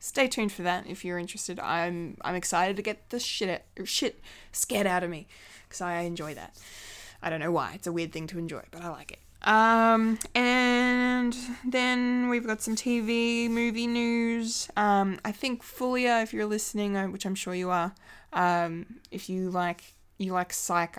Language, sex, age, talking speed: English, female, 20-39, 185 wpm